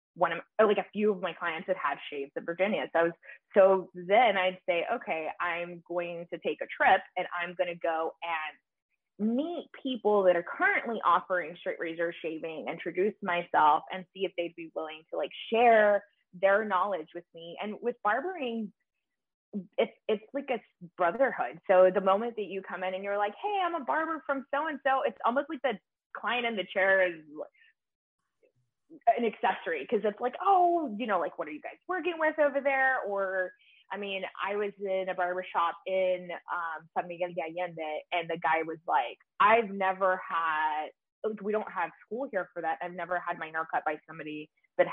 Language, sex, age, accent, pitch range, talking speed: English, female, 20-39, American, 170-225 Hz, 190 wpm